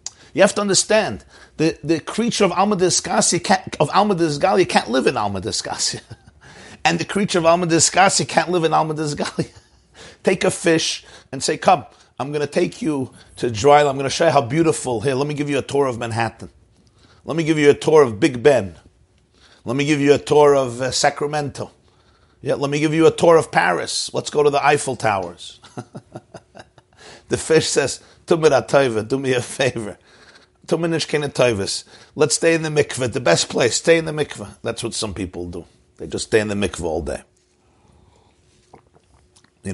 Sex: male